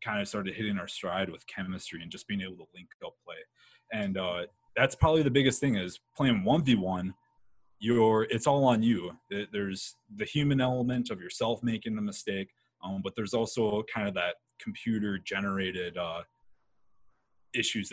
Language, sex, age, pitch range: English, male, 20-39, 100-135 Hz